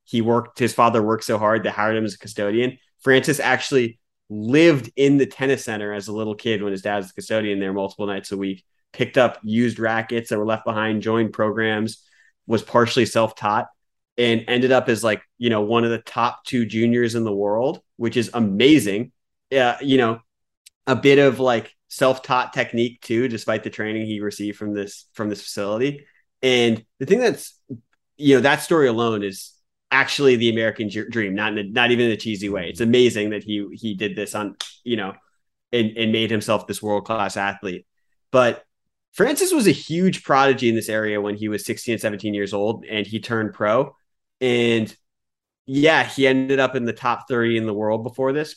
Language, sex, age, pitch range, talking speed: English, male, 30-49, 105-125 Hz, 200 wpm